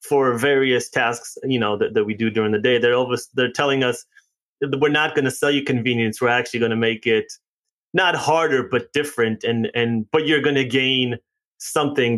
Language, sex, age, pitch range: English, male, 20-39, 115-145 Hz